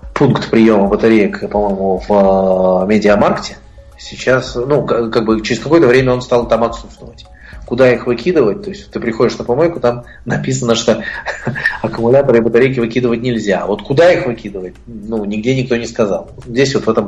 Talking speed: 170 wpm